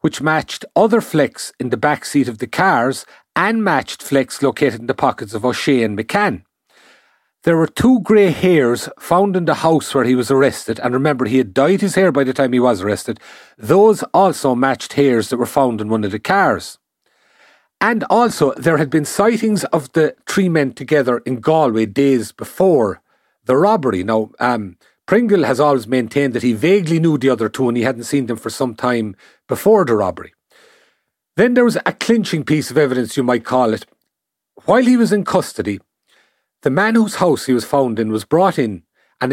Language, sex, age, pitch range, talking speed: English, male, 40-59, 120-170 Hz, 200 wpm